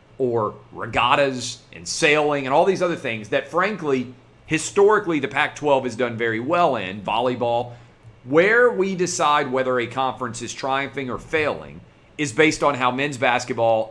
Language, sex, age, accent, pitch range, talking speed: English, male, 40-59, American, 115-140 Hz, 155 wpm